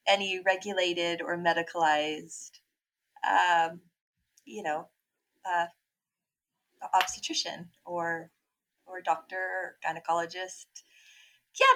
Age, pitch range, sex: 30-49, 175-245 Hz, female